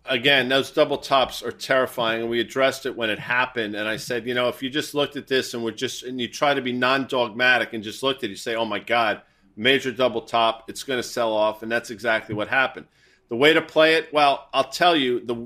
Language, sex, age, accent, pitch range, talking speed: English, male, 40-59, American, 120-145 Hz, 255 wpm